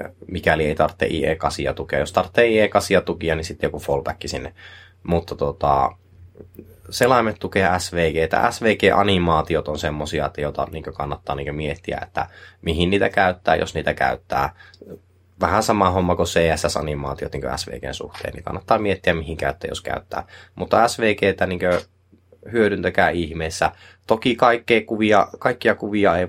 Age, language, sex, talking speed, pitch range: 20-39, Finnish, male, 135 wpm, 80-100 Hz